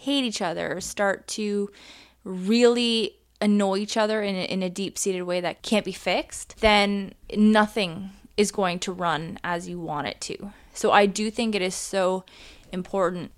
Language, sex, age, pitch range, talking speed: English, female, 20-39, 175-215 Hz, 165 wpm